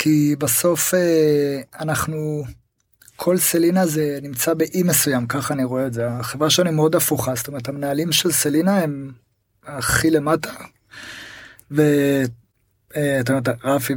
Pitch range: 135-165 Hz